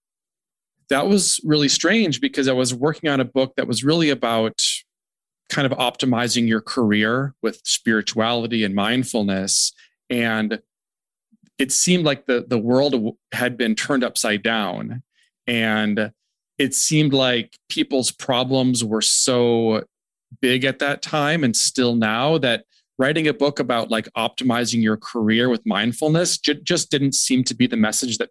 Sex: male